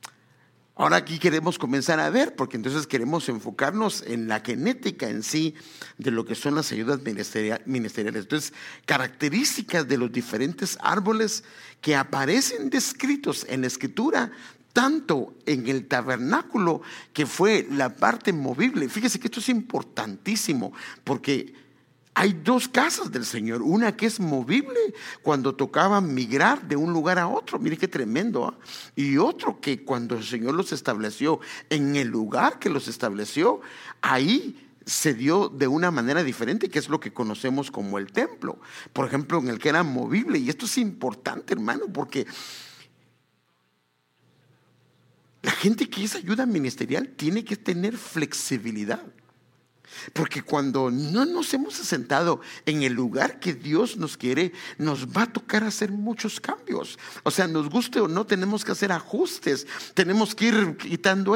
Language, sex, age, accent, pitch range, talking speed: English, male, 50-69, Mexican, 135-215 Hz, 150 wpm